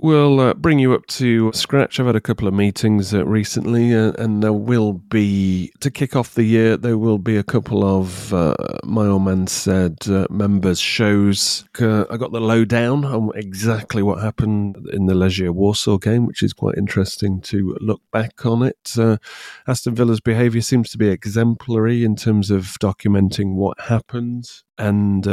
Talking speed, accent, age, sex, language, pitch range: 180 wpm, British, 30-49, male, English, 95-115 Hz